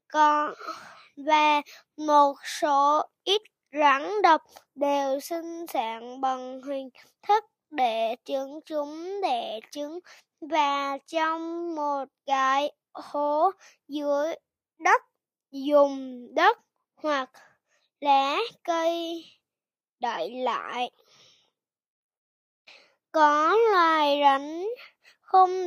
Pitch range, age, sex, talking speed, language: 280-355 Hz, 20-39, female, 80 wpm, Vietnamese